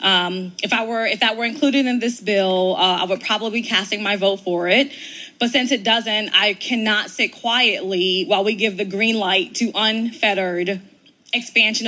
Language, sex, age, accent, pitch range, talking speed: English, female, 20-39, American, 200-250 Hz, 190 wpm